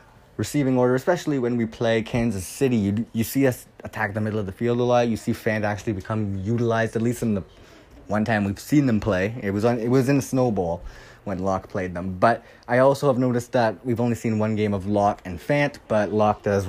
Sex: male